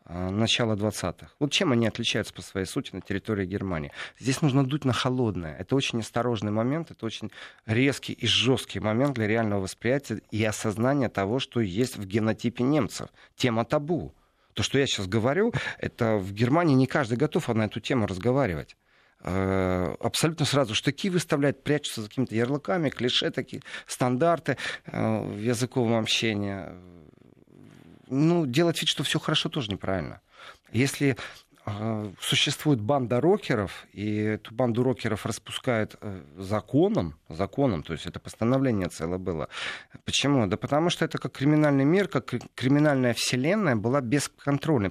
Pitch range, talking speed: 105-140 Hz, 140 wpm